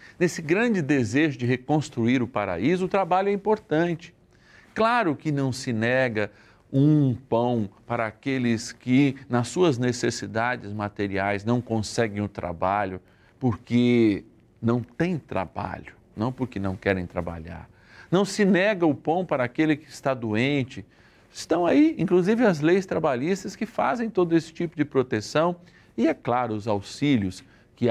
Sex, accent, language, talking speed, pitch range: male, Brazilian, Portuguese, 145 wpm, 110-165 Hz